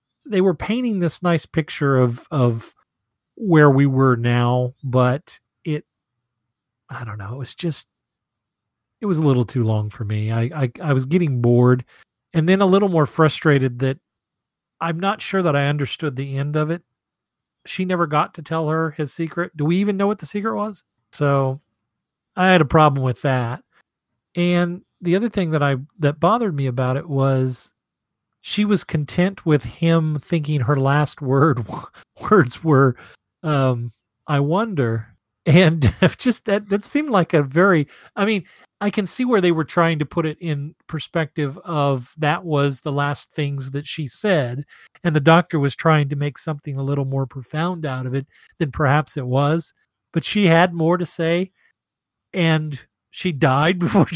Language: English